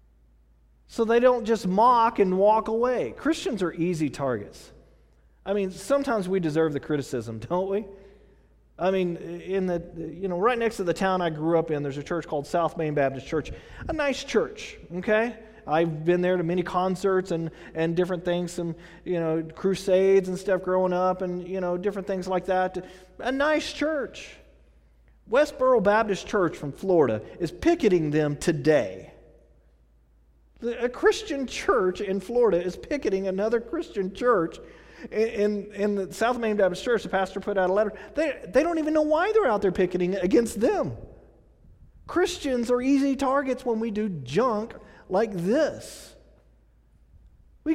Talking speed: 165 wpm